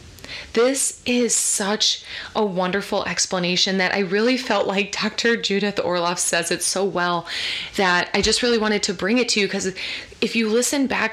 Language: English